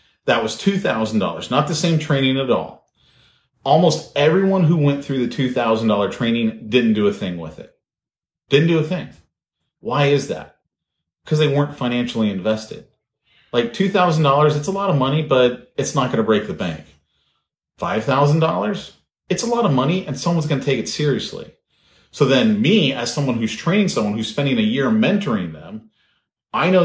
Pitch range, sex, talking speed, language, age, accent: 115-185 Hz, male, 175 wpm, English, 30-49, American